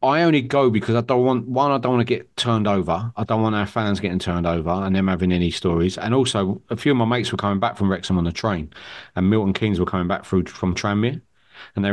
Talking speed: 270 wpm